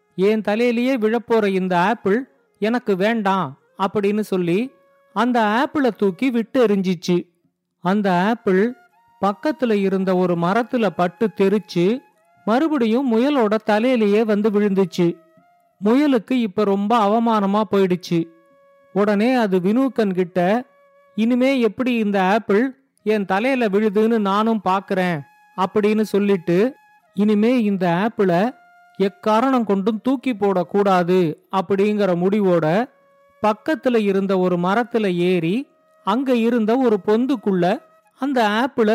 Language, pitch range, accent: Tamil, 190-245 Hz, native